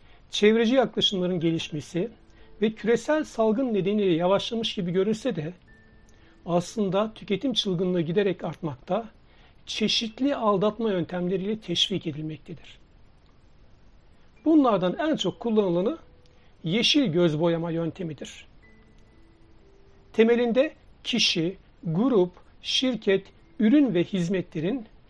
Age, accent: 60-79, native